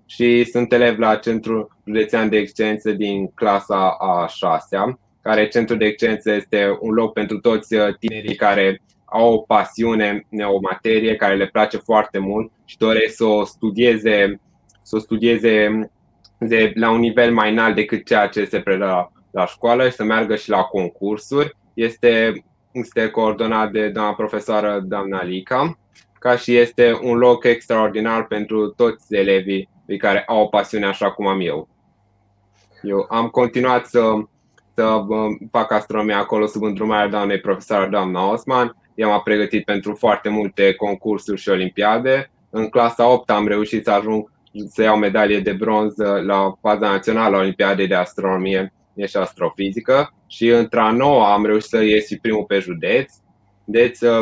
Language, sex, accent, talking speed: Romanian, male, native, 155 wpm